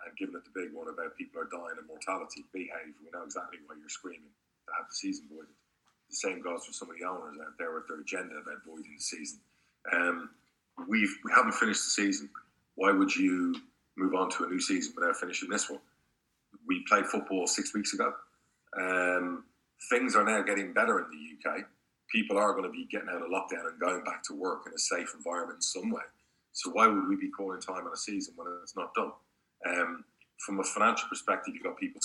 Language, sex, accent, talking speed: English, male, British, 225 wpm